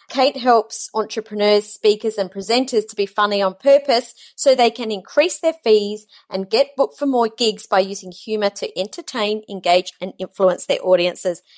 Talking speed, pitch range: 170 wpm, 195-240 Hz